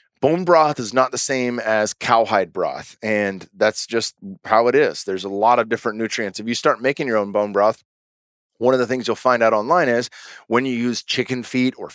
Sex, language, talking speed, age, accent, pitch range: male, English, 220 wpm, 30-49, American, 105-130 Hz